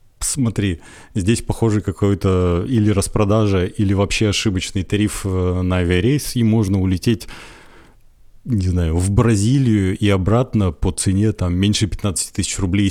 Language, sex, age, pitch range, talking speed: Russian, male, 30-49, 90-110 Hz, 130 wpm